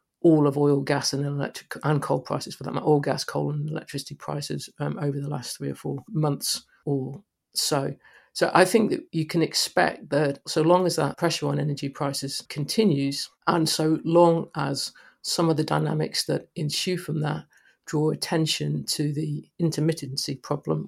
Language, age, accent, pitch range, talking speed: English, 50-69, British, 140-155 Hz, 180 wpm